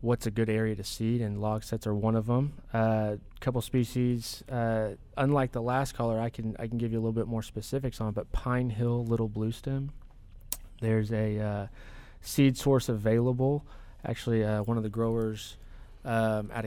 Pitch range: 105-120 Hz